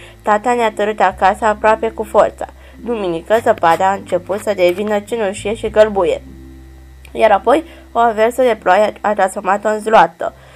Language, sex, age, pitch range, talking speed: Romanian, female, 20-39, 190-235 Hz, 150 wpm